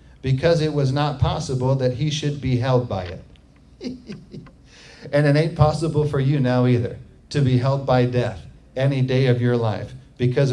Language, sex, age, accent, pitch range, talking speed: English, male, 40-59, American, 130-170 Hz, 175 wpm